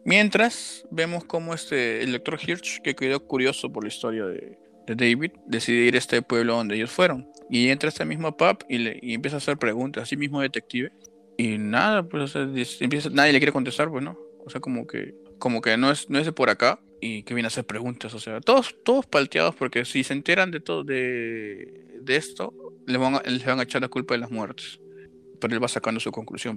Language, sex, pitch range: Spanish, male, 115-155 Hz